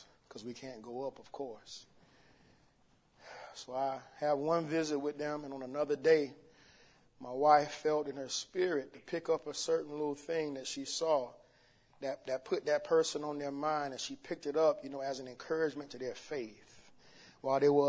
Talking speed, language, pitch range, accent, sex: 195 wpm, English, 140-165 Hz, American, male